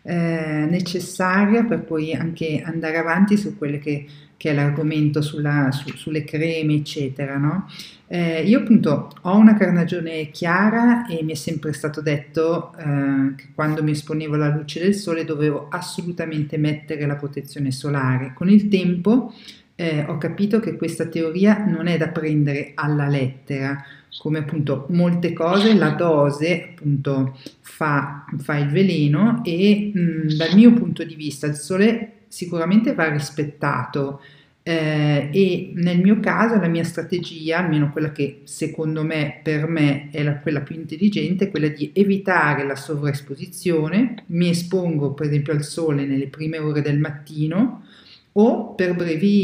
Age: 50-69